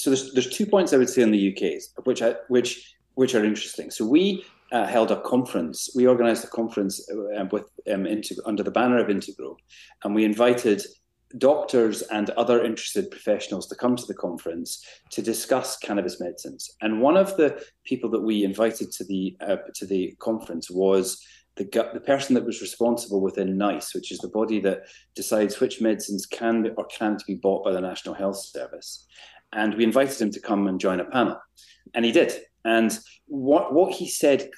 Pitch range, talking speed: 100-125 Hz, 195 wpm